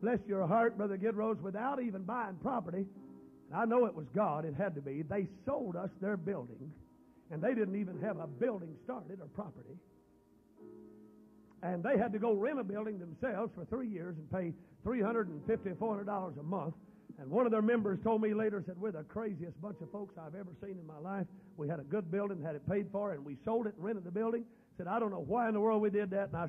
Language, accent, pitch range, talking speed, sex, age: English, American, 185-235 Hz, 230 wpm, male, 50-69